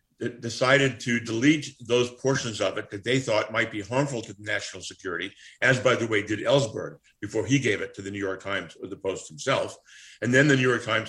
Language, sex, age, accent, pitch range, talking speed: English, male, 50-69, American, 105-125 Hz, 220 wpm